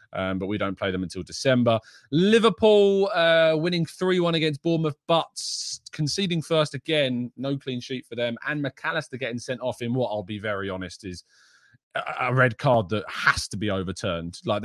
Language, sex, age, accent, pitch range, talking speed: English, male, 20-39, British, 100-150 Hz, 185 wpm